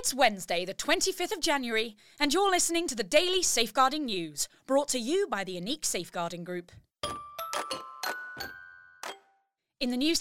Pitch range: 200-305 Hz